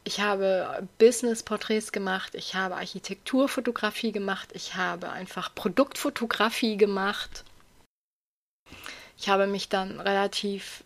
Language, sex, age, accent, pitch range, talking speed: German, female, 20-39, German, 195-220 Hz, 105 wpm